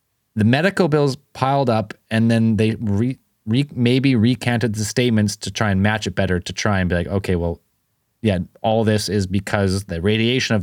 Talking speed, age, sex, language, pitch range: 200 wpm, 20-39, male, English, 100-125 Hz